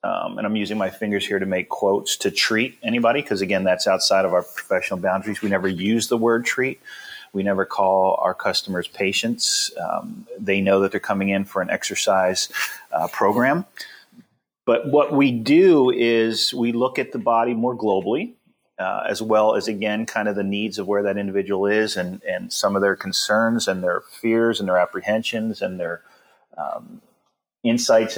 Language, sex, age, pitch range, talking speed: English, male, 30-49, 95-115 Hz, 185 wpm